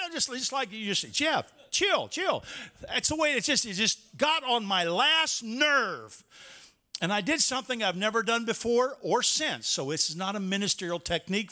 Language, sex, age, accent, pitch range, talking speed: English, male, 50-69, American, 195-305 Hz, 195 wpm